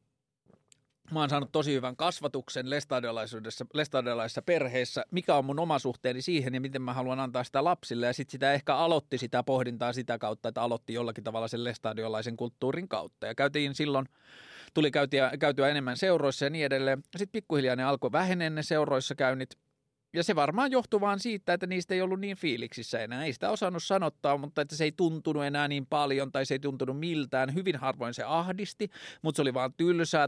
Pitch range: 130-160 Hz